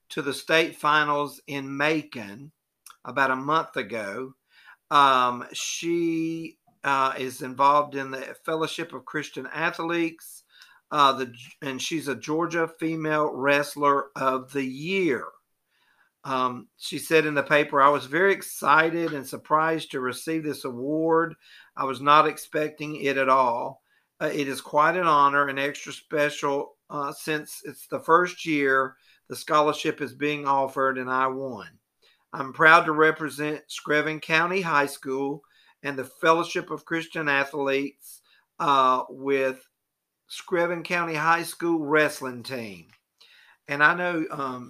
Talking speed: 140 wpm